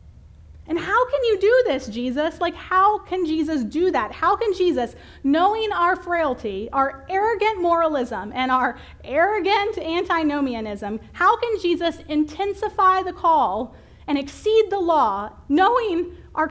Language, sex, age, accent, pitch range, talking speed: English, female, 30-49, American, 200-335 Hz, 140 wpm